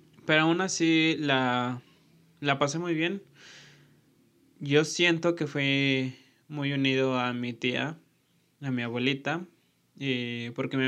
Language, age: Spanish, 20-39